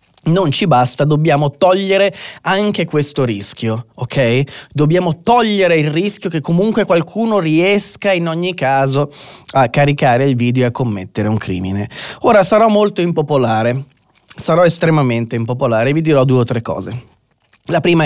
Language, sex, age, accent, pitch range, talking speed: Italian, male, 20-39, native, 120-155 Hz, 150 wpm